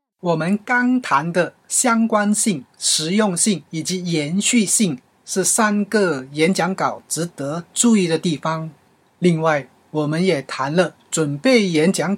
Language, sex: Chinese, male